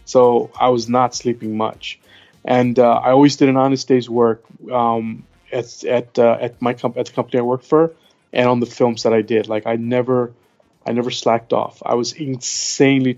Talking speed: 205 wpm